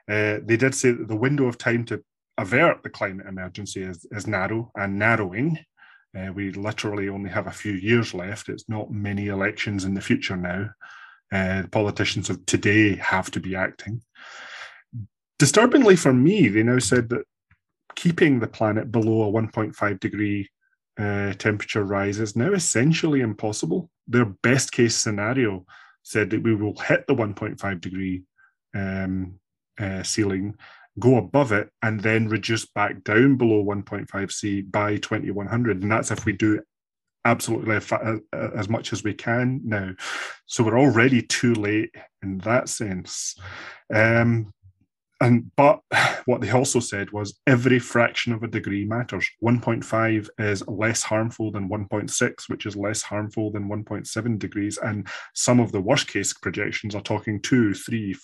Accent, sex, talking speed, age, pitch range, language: British, male, 155 wpm, 30-49, 100-115 Hz, English